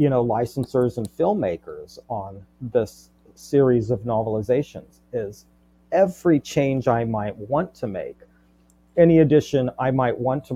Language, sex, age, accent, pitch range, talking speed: English, male, 40-59, American, 95-135 Hz, 135 wpm